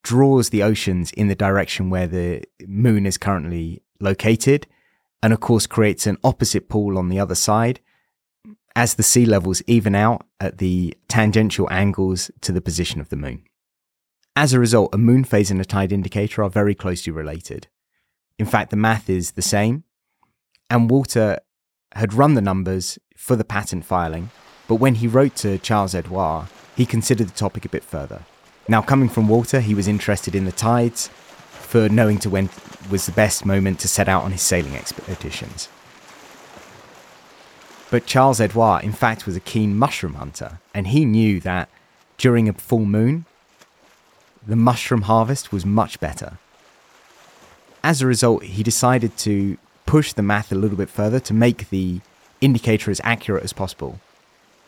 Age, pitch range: 30-49, 95-115 Hz